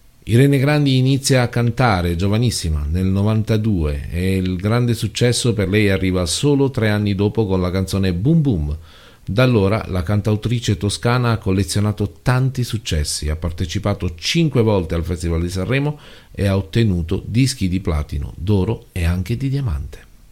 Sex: male